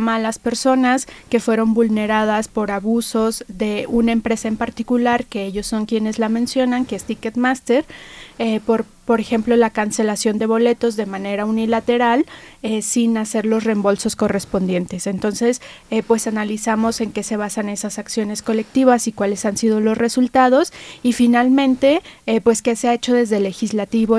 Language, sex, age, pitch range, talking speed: Spanish, female, 20-39, 215-240 Hz, 165 wpm